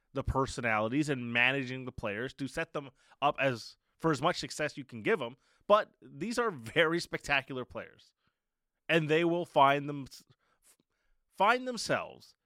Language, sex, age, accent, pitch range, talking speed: English, male, 20-39, American, 130-160 Hz, 155 wpm